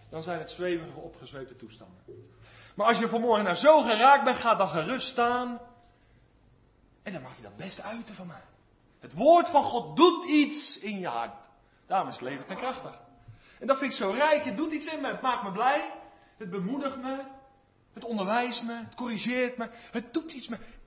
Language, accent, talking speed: Dutch, Dutch, 205 wpm